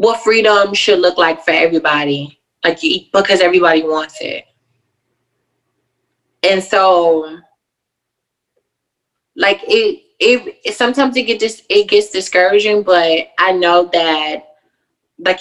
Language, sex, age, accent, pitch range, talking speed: English, female, 20-39, American, 165-220 Hz, 115 wpm